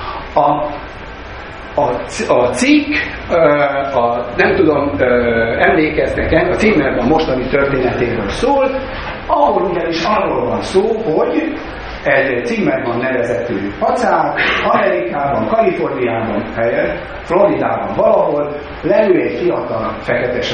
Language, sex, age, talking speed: Hungarian, male, 60-79, 100 wpm